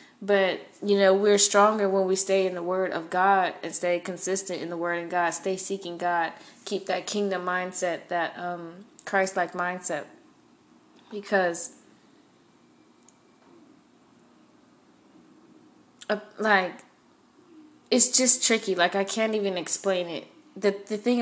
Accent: American